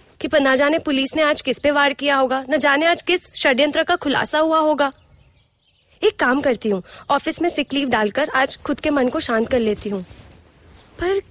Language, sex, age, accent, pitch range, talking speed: Hindi, female, 20-39, native, 265-335 Hz, 205 wpm